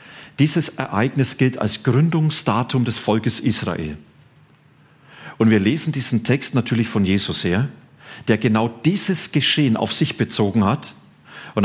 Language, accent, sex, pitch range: German, German, male, 105-135 Hz